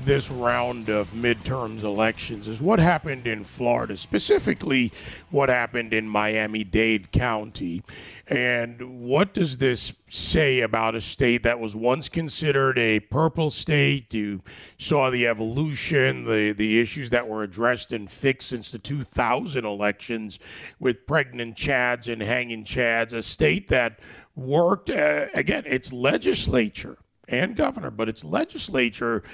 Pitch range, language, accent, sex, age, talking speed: 110-140 Hz, English, American, male, 40-59, 135 wpm